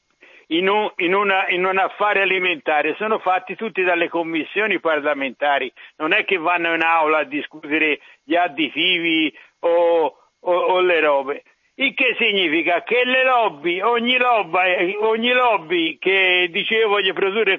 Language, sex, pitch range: Italian, male, 175-280 Hz